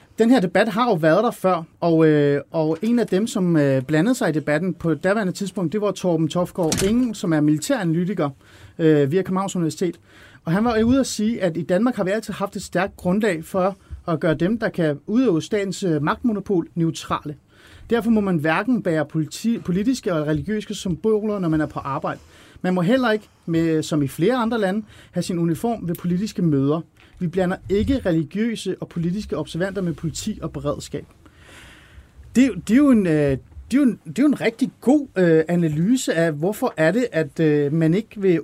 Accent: native